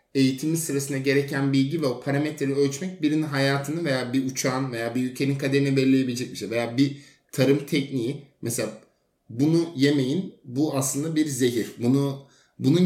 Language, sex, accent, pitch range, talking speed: Turkish, male, native, 125-145 Hz, 155 wpm